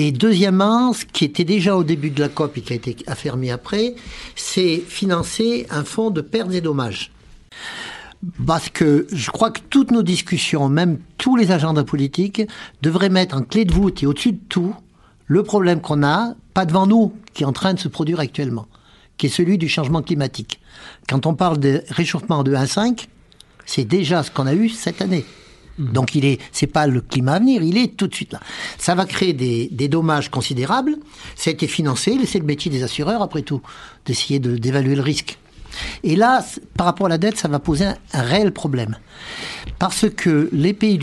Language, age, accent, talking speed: French, 60-79, French, 200 wpm